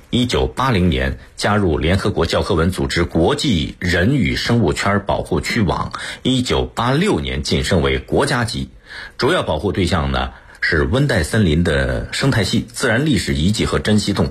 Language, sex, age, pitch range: Chinese, male, 50-69, 75-105 Hz